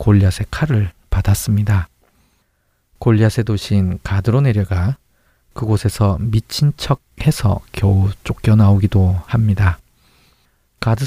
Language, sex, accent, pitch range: Korean, male, native, 100-120 Hz